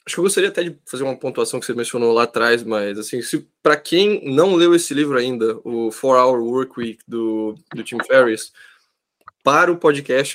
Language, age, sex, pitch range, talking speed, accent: Portuguese, 10-29, male, 125-200 Hz, 210 wpm, Brazilian